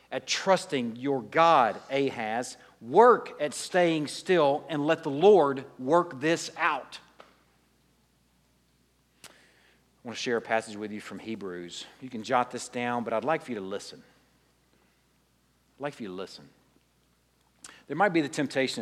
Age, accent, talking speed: 50-69, American, 155 wpm